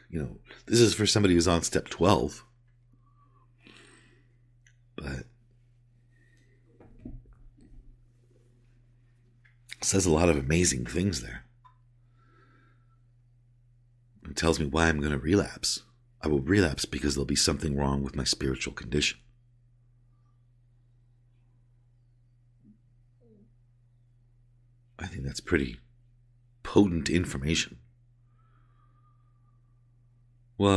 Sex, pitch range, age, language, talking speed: male, 80-120 Hz, 50-69, English, 90 wpm